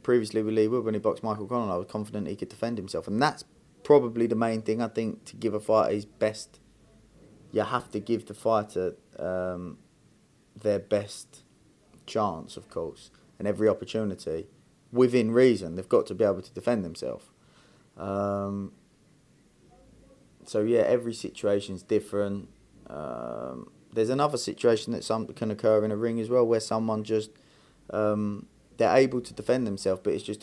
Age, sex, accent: 20-39, male, British